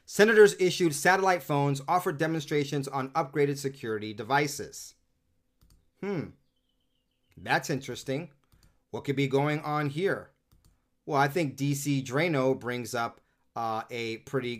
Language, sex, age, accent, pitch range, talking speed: English, male, 30-49, American, 115-155 Hz, 120 wpm